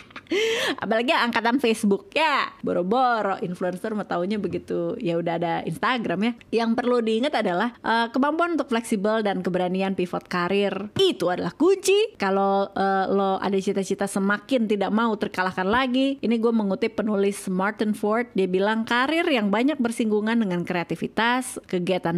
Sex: female